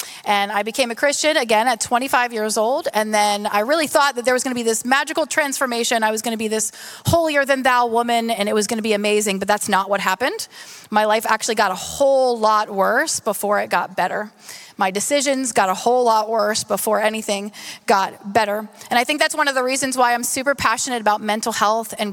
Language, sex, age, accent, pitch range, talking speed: English, female, 30-49, American, 205-245 Hz, 225 wpm